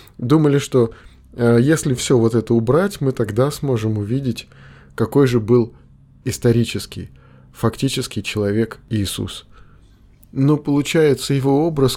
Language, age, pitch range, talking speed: Russian, 20-39, 105-135 Hz, 115 wpm